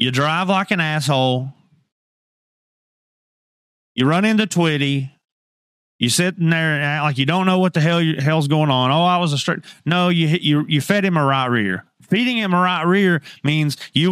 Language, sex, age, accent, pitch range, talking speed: English, male, 30-49, American, 140-180 Hz, 205 wpm